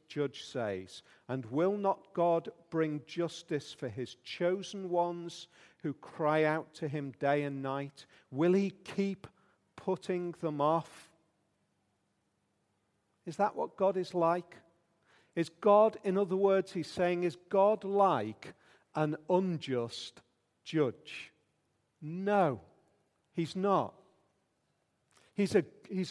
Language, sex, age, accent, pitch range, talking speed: English, male, 50-69, British, 155-200 Hz, 115 wpm